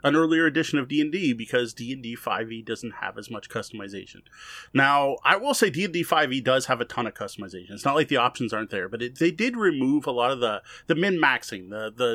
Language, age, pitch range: English, 30-49, 120-155 Hz